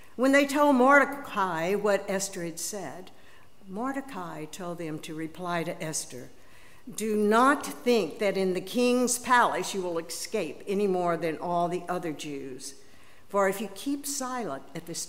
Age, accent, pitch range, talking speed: 60-79, American, 160-230 Hz, 160 wpm